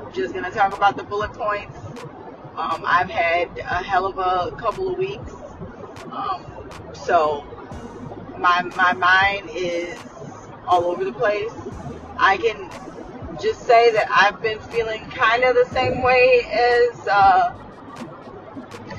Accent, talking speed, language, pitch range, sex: American, 135 wpm, English, 190-270 Hz, female